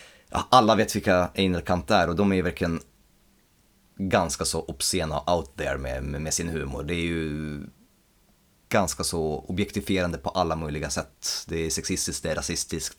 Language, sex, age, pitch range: Swedish, male, 30-49, 80-110 Hz